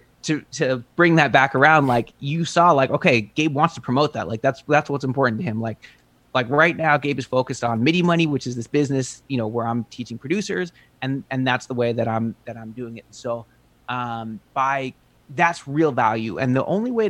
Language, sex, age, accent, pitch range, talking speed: English, male, 30-49, American, 120-150 Hz, 225 wpm